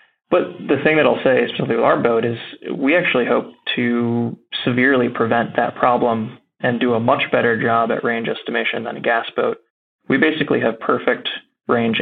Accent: American